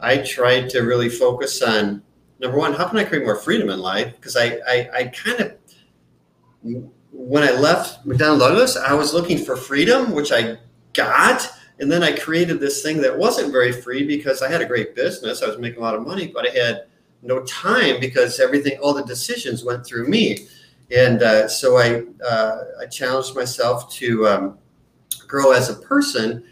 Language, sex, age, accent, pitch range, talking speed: English, male, 40-59, American, 110-140 Hz, 190 wpm